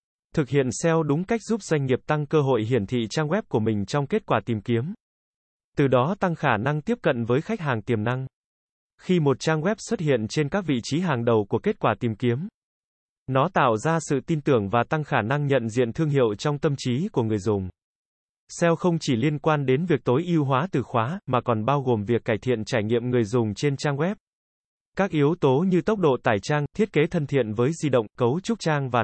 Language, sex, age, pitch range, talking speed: Vietnamese, male, 20-39, 120-160 Hz, 240 wpm